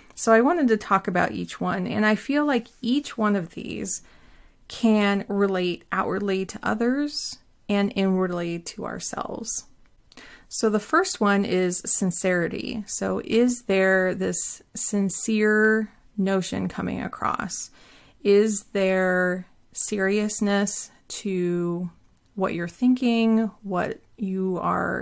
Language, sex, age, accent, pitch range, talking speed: English, female, 30-49, American, 190-220 Hz, 120 wpm